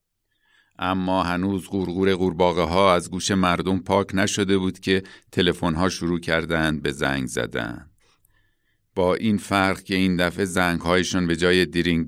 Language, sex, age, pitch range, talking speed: Persian, male, 50-69, 85-95 Hz, 150 wpm